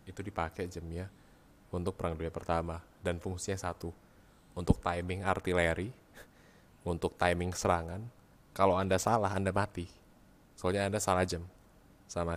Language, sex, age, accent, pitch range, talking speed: Indonesian, male, 20-39, native, 85-100 Hz, 125 wpm